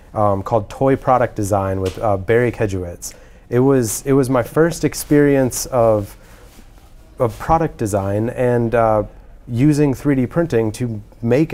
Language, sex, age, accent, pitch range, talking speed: English, male, 30-49, American, 105-135 Hz, 140 wpm